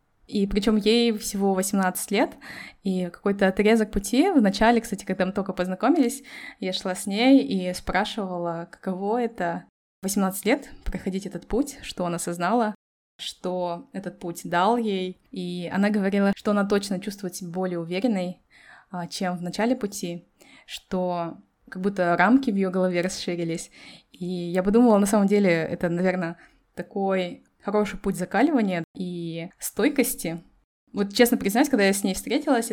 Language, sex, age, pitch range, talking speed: Russian, female, 20-39, 180-215 Hz, 150 wpm